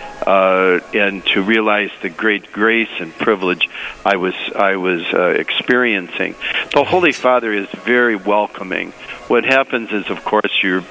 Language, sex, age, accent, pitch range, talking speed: English, male, 60-79, American, 100-115 Hz, 150 wpm